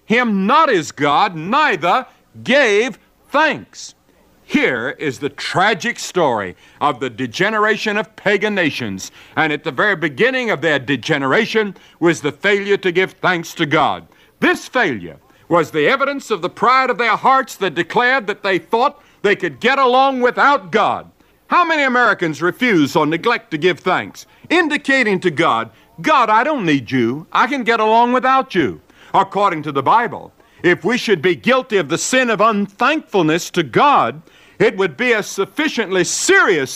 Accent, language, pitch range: American, English, 170-235 Hz